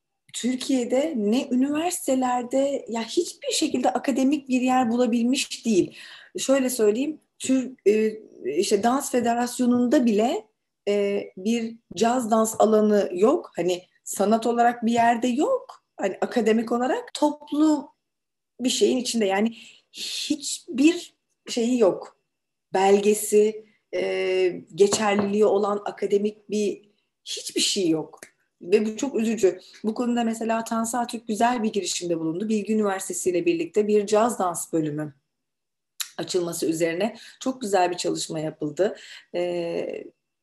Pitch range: 190-250 Hz